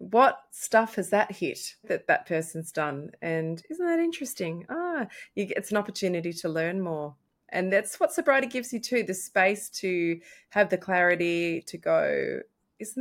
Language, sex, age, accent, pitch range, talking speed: English, female, 20-39, Australian, 165-210 Hz, 175 wpm